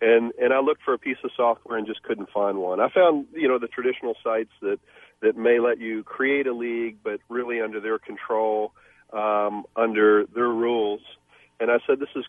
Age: 40-59